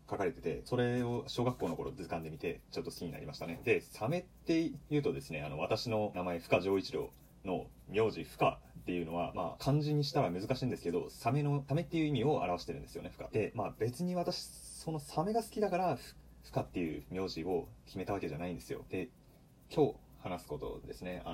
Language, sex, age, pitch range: Japanese, male, 30-49, 95-140 Hz